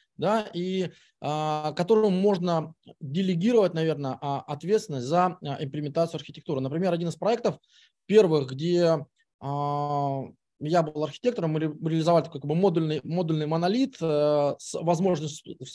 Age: 20-39